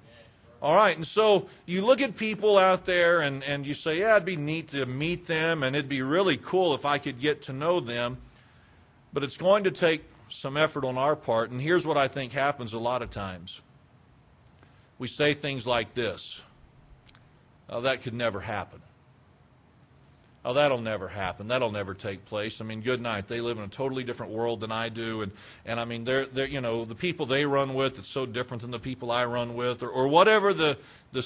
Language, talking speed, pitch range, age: English, 215 wpm, 120-160 Hz, 40-59